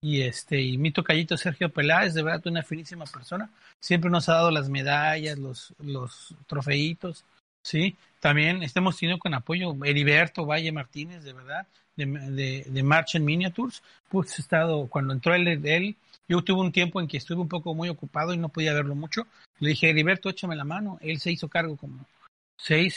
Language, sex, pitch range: Spanish, male, 150-180 Hz